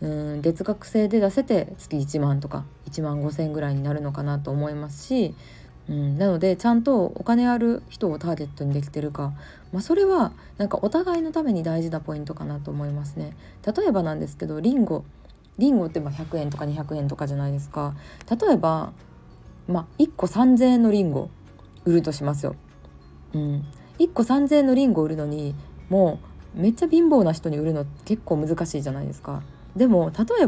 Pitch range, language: 145-205 Hz, Japanese